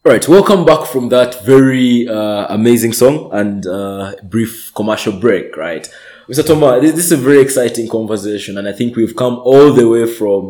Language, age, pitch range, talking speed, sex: English, 20-39, 100-130 Hz, 190 wpm, male